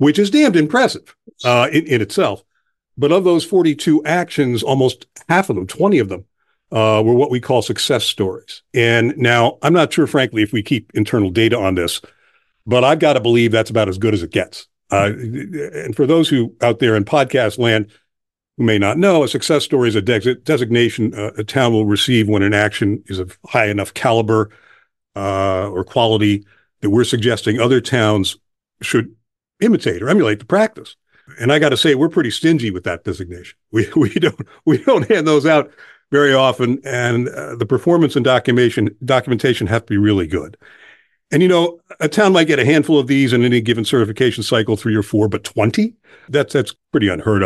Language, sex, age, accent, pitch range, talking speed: English, male, 50-69, American, 110-145 Hz, 200 wpm